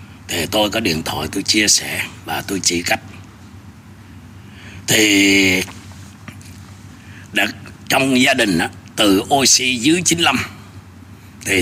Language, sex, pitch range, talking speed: Vietnamese, male, 95-115 Hz, 120 wpm